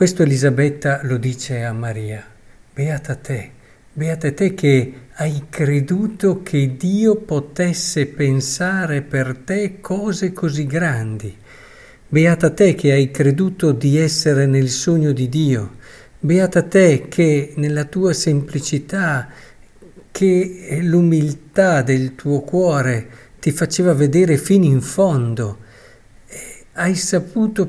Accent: native